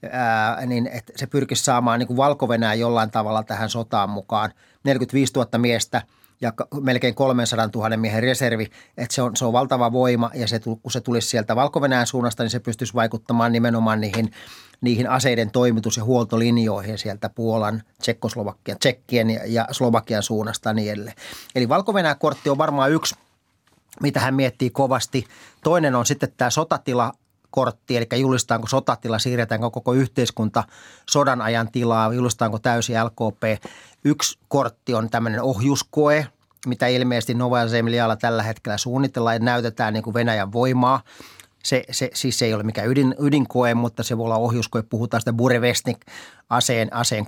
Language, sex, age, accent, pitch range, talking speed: Finnish, male, 30-49, native, 115-130 Hz, 150 wpm